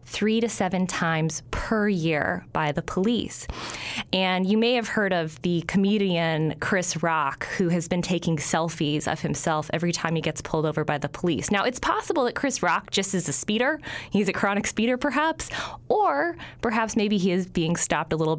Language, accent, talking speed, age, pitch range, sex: English, American, 195 wpm, 20-39, 160-220 Hz, female